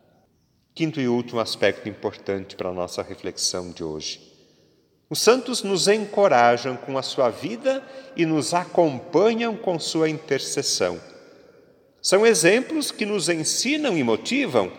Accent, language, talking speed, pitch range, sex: Brazilian, Portuguese, 130 wpm, 140-225 Hz, male